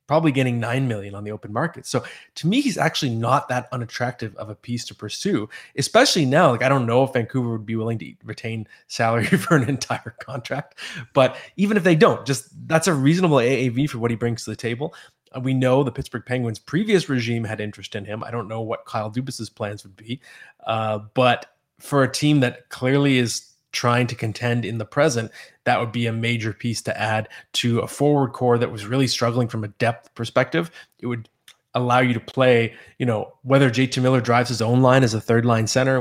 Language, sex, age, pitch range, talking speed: English, male, 20-39, 115-135 Hz, 215 wpm